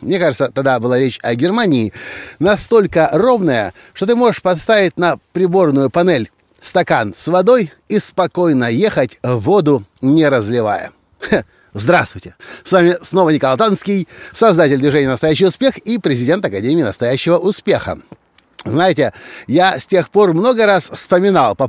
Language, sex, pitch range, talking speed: Russian, male, 145-200 Hz, 140 wpm